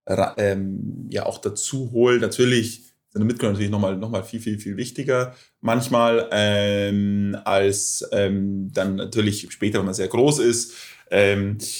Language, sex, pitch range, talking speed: German, male, 105-125 Hz, 155 wpm